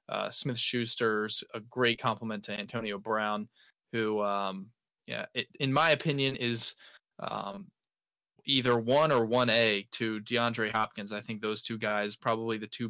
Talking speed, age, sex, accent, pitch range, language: 160 wpm, 20-39, male, American, 110-130 Hz, English